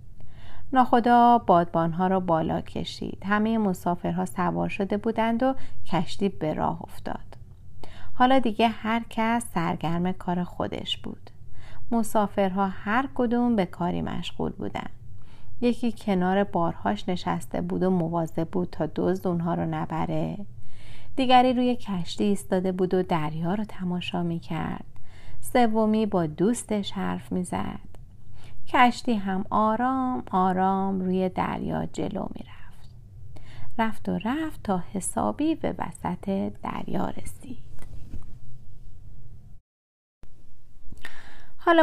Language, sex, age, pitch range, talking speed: Persian, female, 30-49, 165-225 Hz, 110 wpm